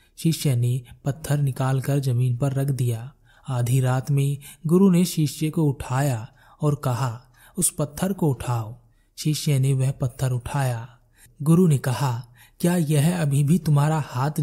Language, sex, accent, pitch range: Hindi, male, native, 125-160 Hz